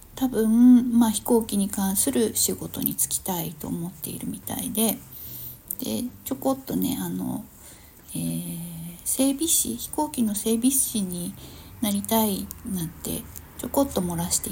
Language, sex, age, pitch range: Japanese, female, 60-79, 180-245 Hz